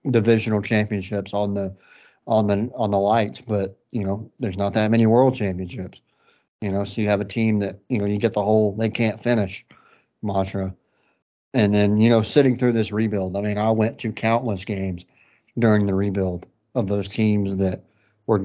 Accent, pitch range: American, 100-115 Hz